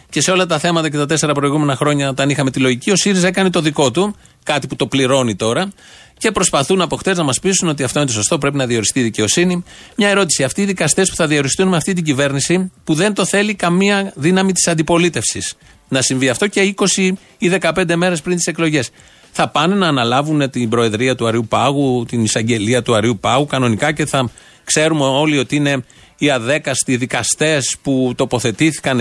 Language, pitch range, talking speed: Greek, 130-175 Hz, 205 wpm